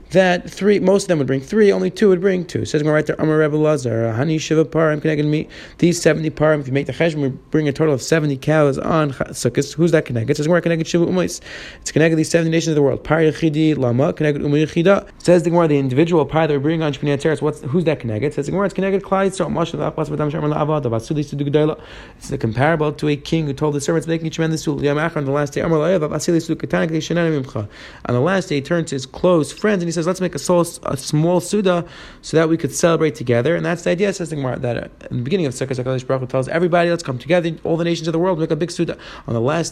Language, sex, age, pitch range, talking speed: English, male, 30-49, 145-170 Hz, 225 wpm